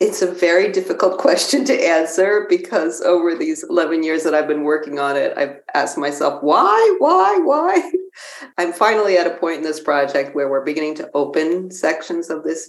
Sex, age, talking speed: female, 40-59, 190 wpm